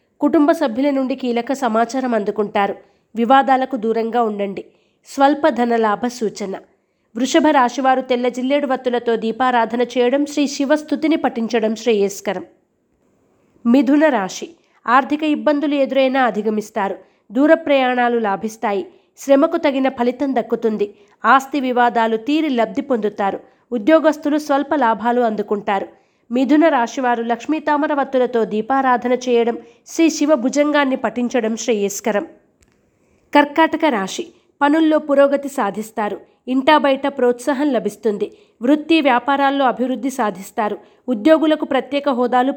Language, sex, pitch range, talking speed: Telugu, female, 230-290 Hz, 100 wpm